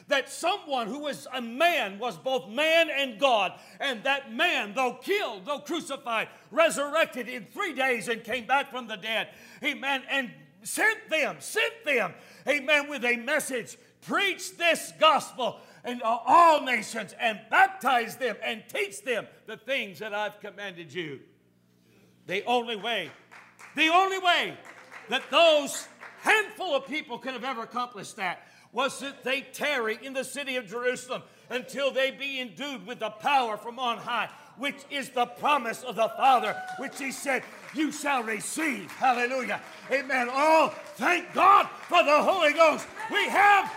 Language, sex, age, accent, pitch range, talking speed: English, male, 60-79, American, 235-310 Hz, 160 wpm